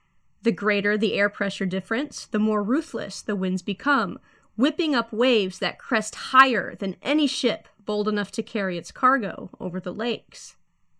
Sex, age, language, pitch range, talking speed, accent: female, 30-49, English, 205-255 Hz, 165 wpm, American